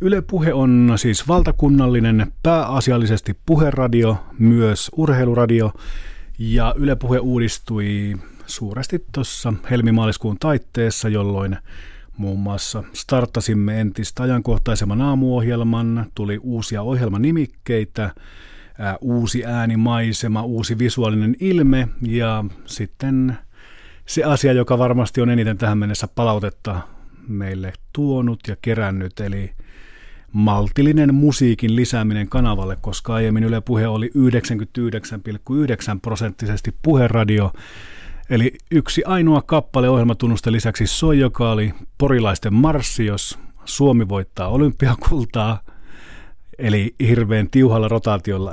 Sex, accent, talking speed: male, native, 95 wpm